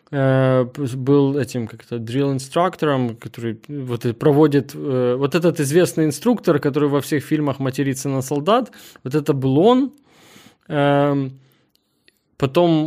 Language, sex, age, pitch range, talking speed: Russian, male, 20-39, 130-155 Hz, 105 wpm